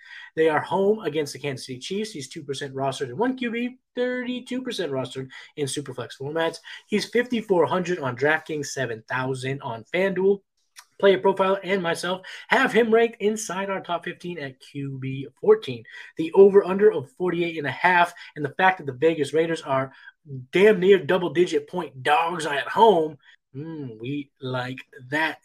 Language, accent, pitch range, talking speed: English, American, 140-210 Hz, 150 wpm